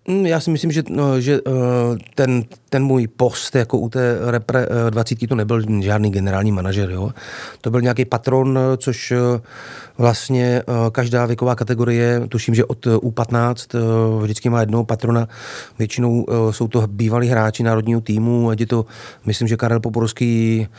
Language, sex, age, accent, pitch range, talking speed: Czech, male, 30-49, native, 115-125 Hz, 145 wpm